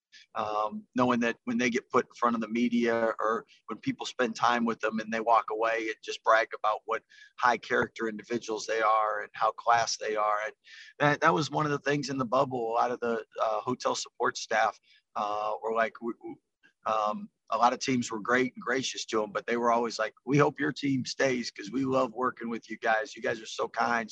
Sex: male